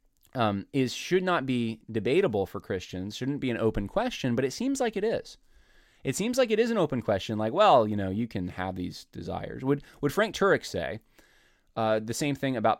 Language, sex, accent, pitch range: English, male, American, 100-140 Hz